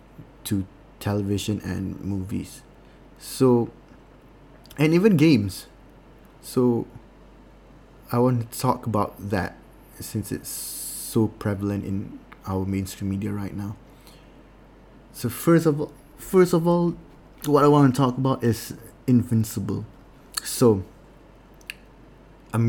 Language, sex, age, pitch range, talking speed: English, male, 20-39, 105-130 Hz, 110 wpm